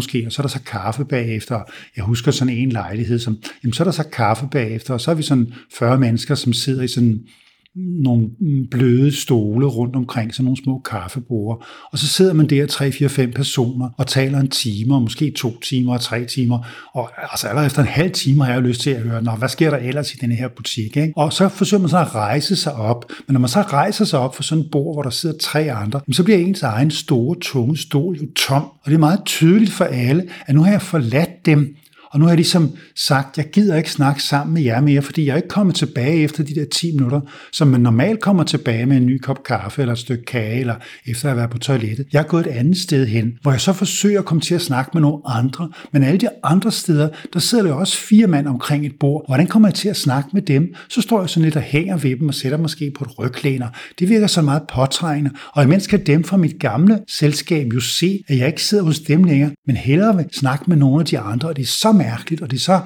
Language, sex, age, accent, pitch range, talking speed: Danish, male, 60-79, native, 125-165 Hz, 255 wpm